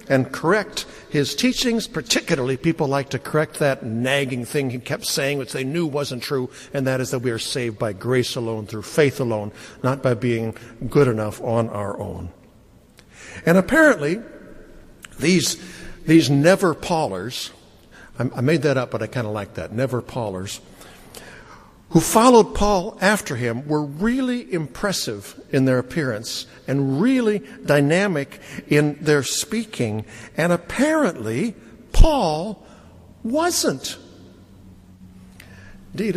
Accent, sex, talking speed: American, male, 135 wpm